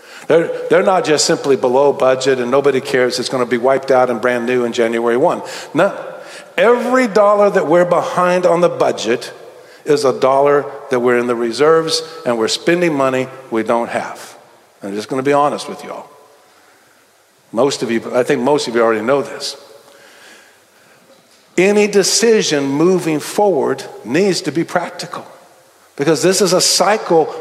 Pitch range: 130-180 Hz